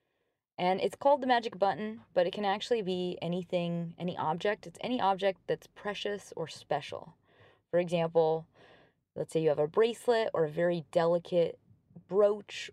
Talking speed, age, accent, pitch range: 160 wpm, 20-39, American, 160-200 Hz